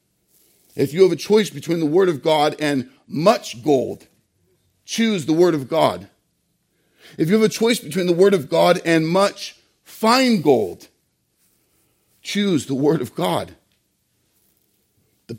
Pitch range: 140-210 Hz